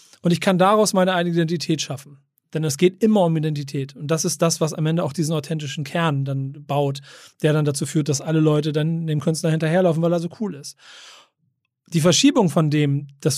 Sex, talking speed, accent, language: male, 215 wpm, German, German